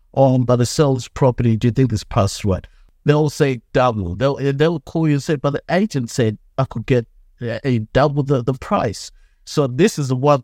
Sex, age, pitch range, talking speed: male, 60-79, 105-135 Hz, 220 wpm